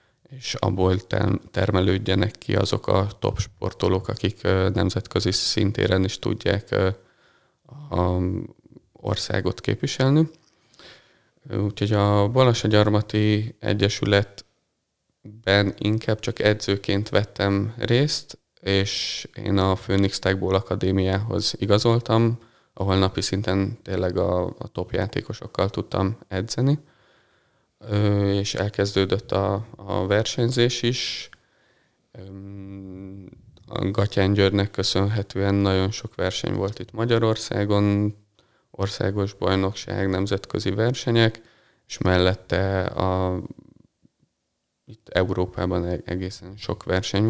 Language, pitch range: Hungarian, 95-115 Hz